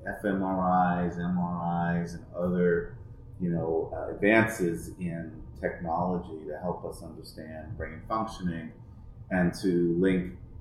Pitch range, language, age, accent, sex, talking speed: 85-110 Hz, English, 30-49, American, male, 105 wpm